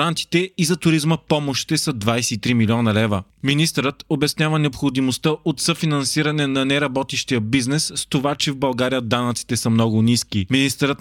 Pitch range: 125-150 Hz